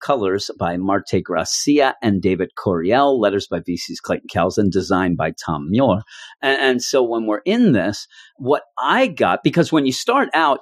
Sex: male